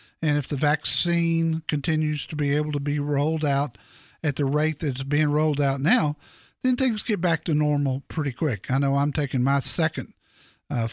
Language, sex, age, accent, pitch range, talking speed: English, male, 50-69, American, 130-165 Hz, 200 wpm